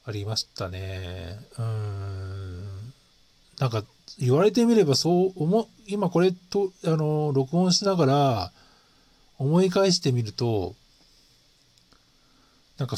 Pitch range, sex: 110-170 Hz, male